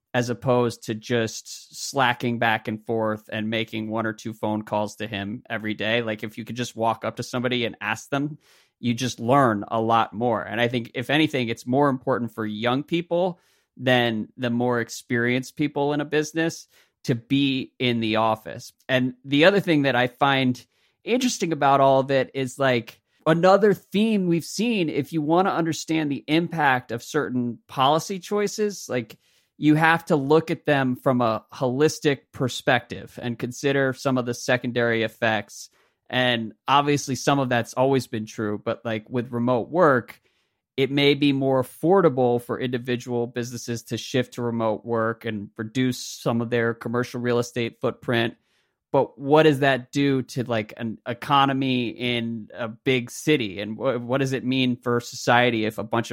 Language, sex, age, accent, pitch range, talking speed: English, male, 30-49, American, 115-140 Hz, 175 wpm